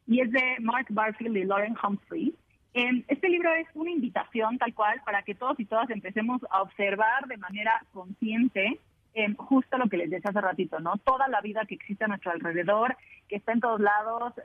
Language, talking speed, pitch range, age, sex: Spanish, 205 wpm, 200-240 Hz, 30-49, female